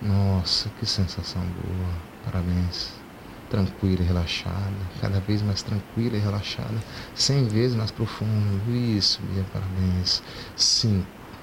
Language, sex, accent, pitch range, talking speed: Portuguese, male, Brazilian, 85-105 Hz, 115 wpm